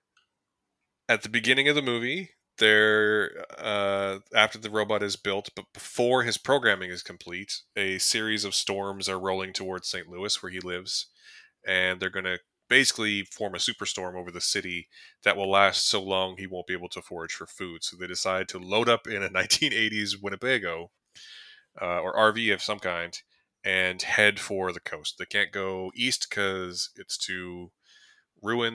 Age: 20-39